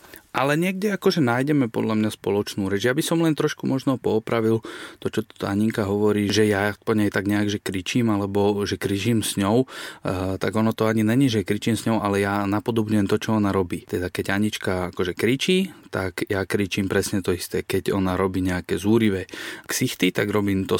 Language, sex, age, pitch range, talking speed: Slovak, male, 30-49, 100-120 Hz, 195 wpm